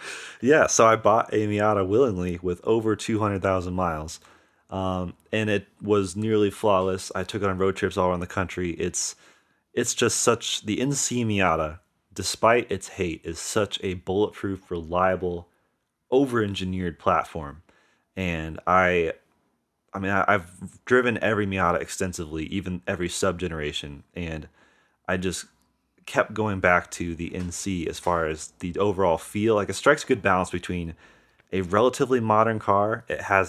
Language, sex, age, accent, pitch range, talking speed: English, male, 30-49, American, 85-100 Hz, 150 wpm